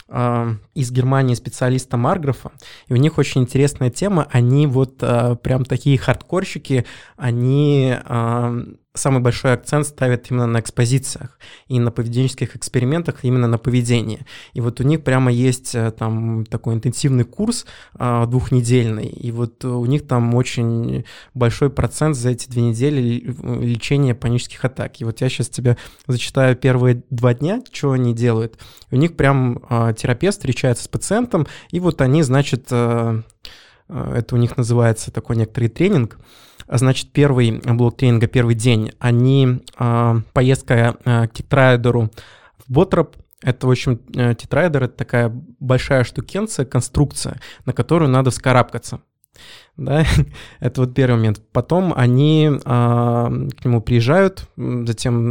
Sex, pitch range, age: male, 120-135 Hz, 20-39